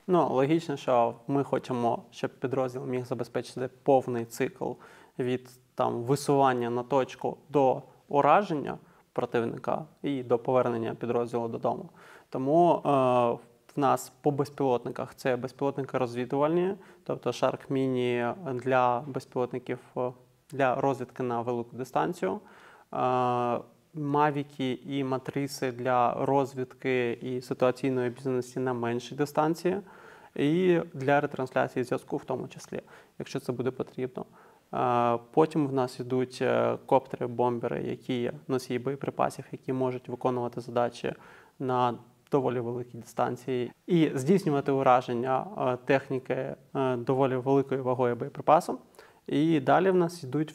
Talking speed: 115 wpm